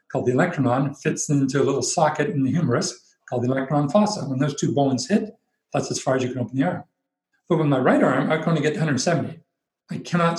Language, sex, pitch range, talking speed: English, male, 135-185 Hz, 245 wpm